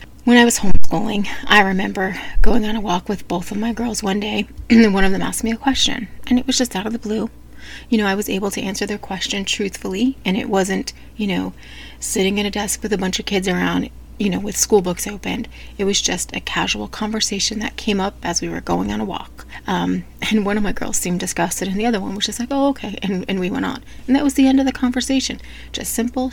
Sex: female